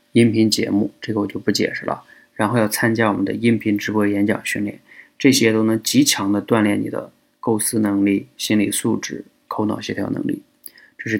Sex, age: male, 20-39